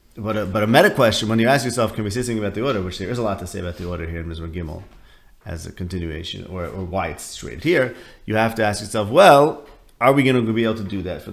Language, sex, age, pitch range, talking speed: English, male, 30-49, 95-120 Hz, 295 wpm